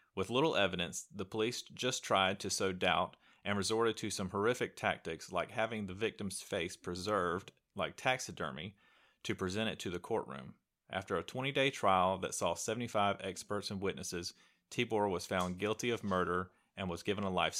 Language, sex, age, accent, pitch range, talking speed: English, male, 30-49, American, 90-110 Hz, 175 wpm